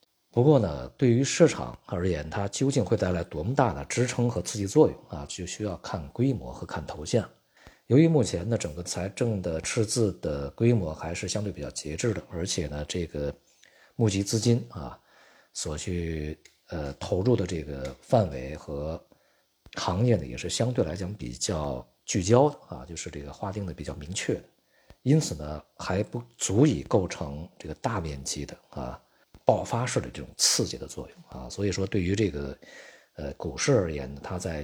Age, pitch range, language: 50-69, 75-110 Hz, Chinese